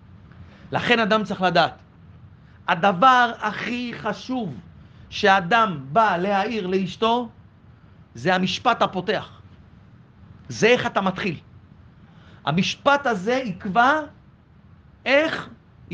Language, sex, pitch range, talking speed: Hebrew, male, 190-250 Hz, 85 wpm